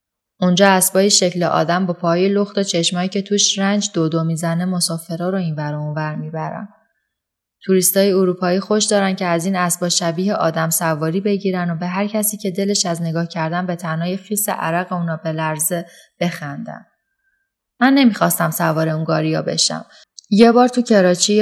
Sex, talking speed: female, 170 wpm